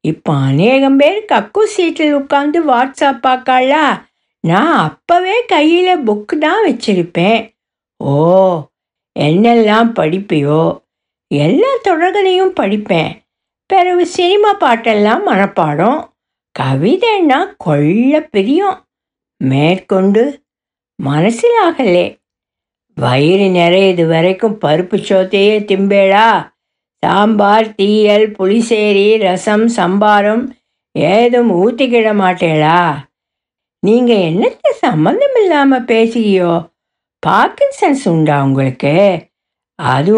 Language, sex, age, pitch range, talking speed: Tamil, female, 60-79, 180-275 Hz, 75 wpm